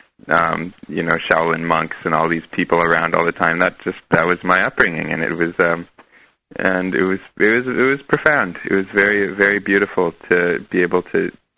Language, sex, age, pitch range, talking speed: English, male, 20-39, 85-100 Hz, 185 wpm